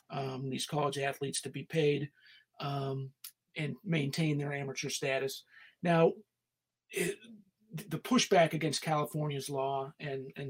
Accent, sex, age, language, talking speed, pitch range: American, male, 40-59, English, 125 wpm, 140-165 Hz